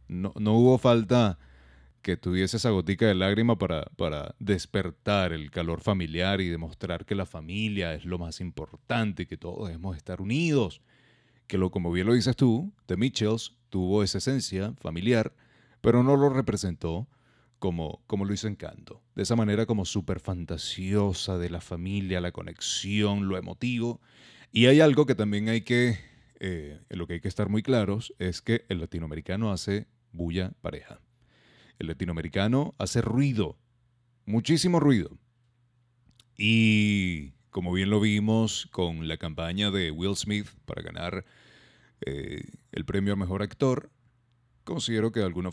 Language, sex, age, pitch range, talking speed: Spanish, male, 30-49, 90-115 Hz, 155 wpm